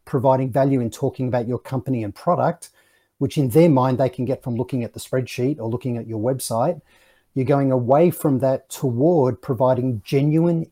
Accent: Australian